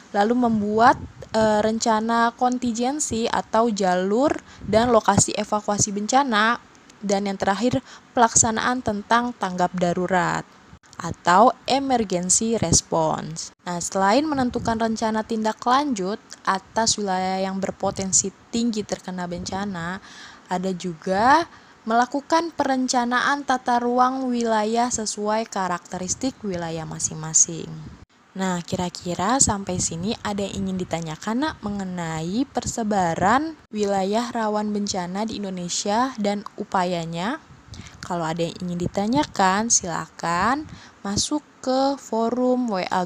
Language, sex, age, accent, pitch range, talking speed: Indonesian, female, 20-39, native, 185-235 Hz, 100 wpm